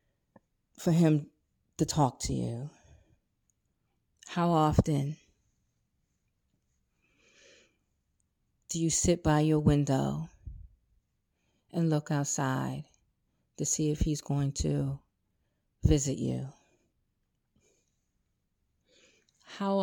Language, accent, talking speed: English, American, 80 wpm